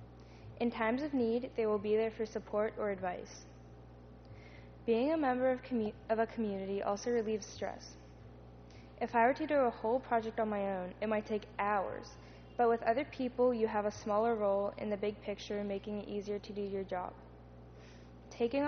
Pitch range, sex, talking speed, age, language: 185-230 Hz, female, 185 wpm, 10-29, English